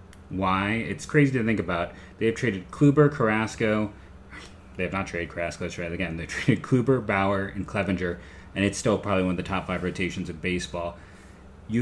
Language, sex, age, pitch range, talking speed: English, male, 30-49, 90-105 Hz, 200 wpm